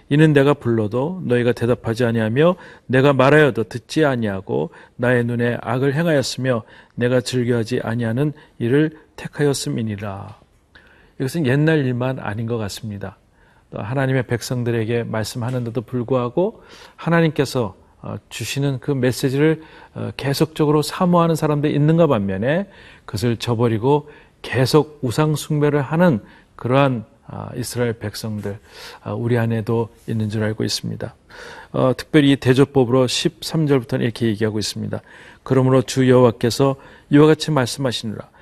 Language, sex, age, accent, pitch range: Korean, male, 40-59, native, 115-145 Hz